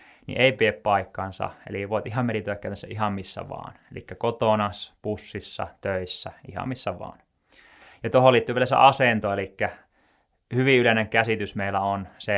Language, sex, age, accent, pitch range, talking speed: Finnish, male, 20-39, native, 100-125 Hz, 145 wpm